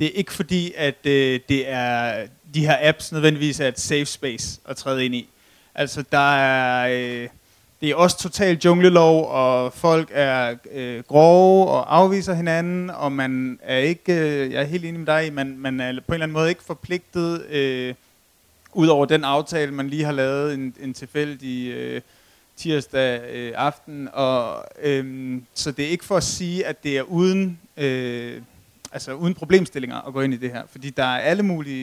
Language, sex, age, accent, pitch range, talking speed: Danish, male, 30-49, native, 130-165 Hz, 190 wpm